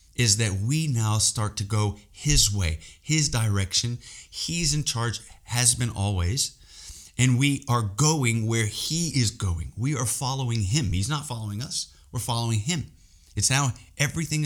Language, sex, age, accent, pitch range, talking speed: English, male, 30-49, American, 100-130 Hz, 160 wpm